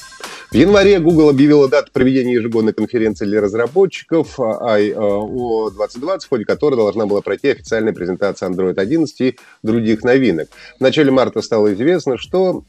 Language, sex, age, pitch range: Russian, male, 30-49, 105-155 Hz